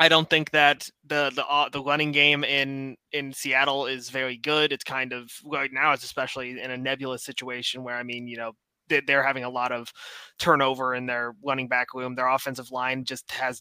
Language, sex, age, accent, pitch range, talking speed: English, male, 20-39, American, 130-160 Hz, 210 wpm